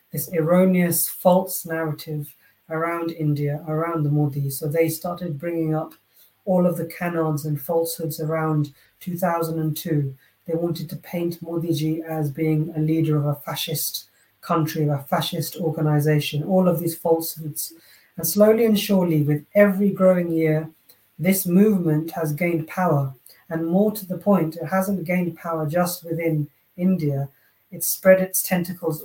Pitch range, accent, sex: 155-180 Hz, British, female